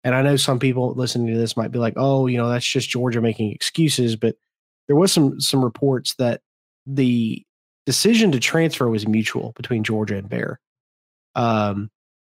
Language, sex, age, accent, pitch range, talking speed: English, male, 30-49, American, 120-145 Hz, 180 wpm